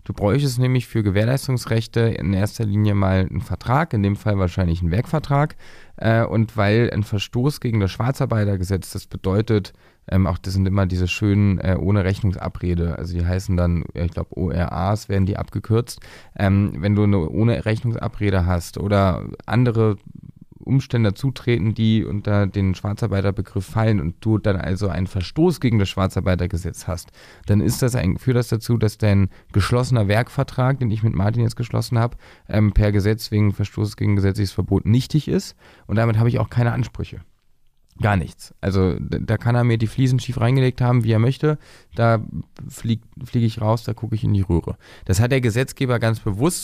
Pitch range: 95-120 Hz